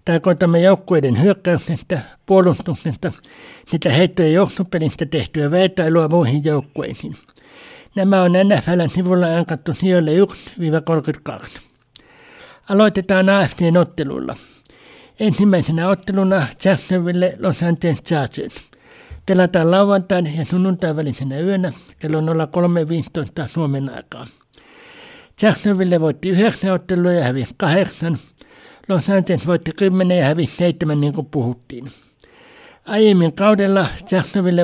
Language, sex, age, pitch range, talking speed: Finnish, male, 60-79, 160-195 Hz, 95 wpm